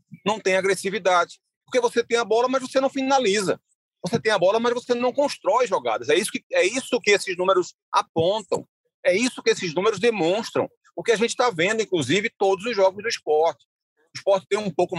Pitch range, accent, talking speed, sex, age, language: 160-245 Hz, Brazilian, 205 wpm, male, 30-49, Portuguese